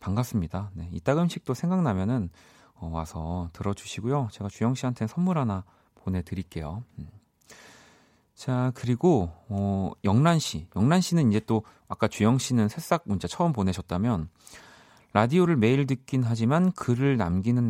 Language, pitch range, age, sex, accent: Korean, 90-130 Hz, 40-59, male, native